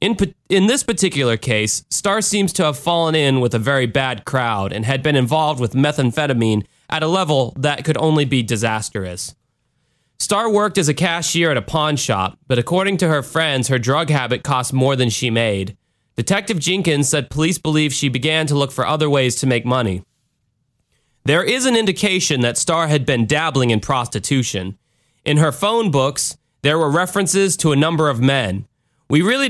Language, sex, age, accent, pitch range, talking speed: English, male, 20-39, American, 125-160 Hz, 185 wpm